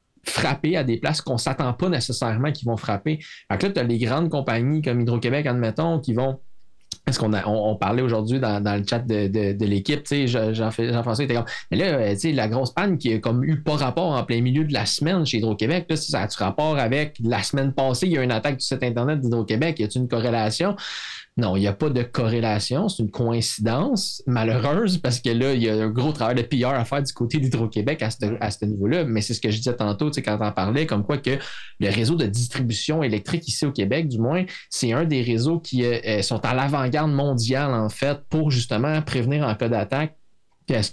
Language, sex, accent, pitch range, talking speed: French, male, Canadian, 115-150 Hz, 245 wpm